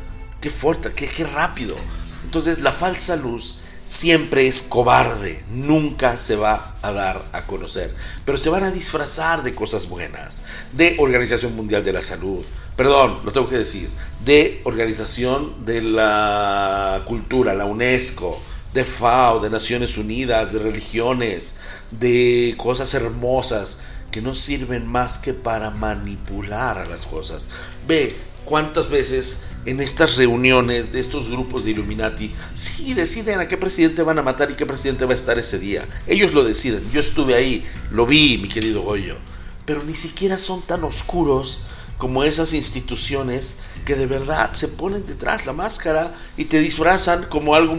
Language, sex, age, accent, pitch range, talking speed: Spanish, male, 50-69, Mexican, 110-150 Hz, 155 wpm